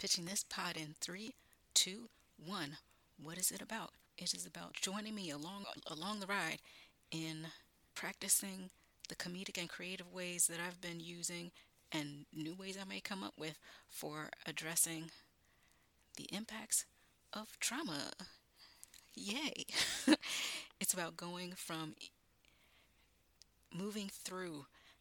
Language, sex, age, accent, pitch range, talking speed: English, female, 30-49, American, 155-190 Hz, 125 wpm